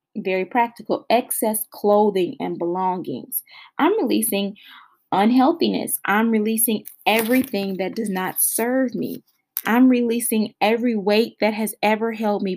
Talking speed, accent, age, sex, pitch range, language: 125 wpm, American, 20-39, female, 195-250 Hz, English